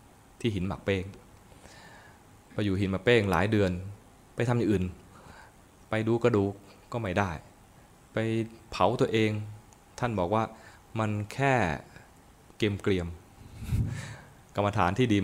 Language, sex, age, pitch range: Thai, male, 20-39, 90-115 Hz